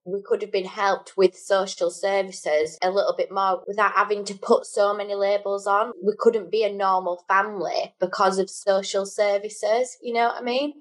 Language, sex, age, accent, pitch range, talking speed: English, female, 20-39, British, 180-215 Hz, 195 wpm